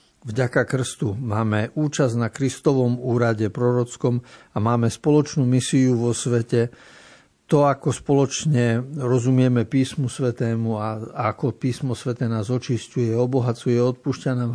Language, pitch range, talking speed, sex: Slovak, 115-145 Hz, 120 wpm, male